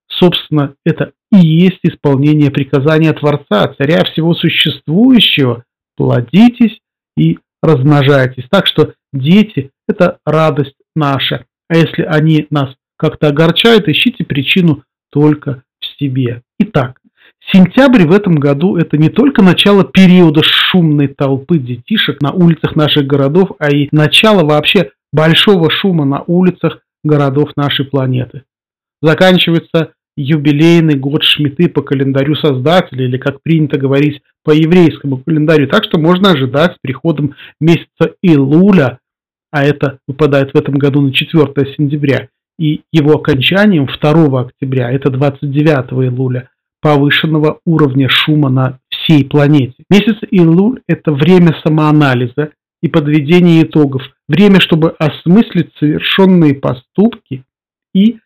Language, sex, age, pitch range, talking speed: Russian, male, 40-59, 140-170 Hz, 125 wpm